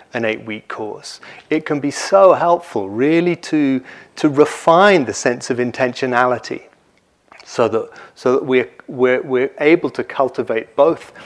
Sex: male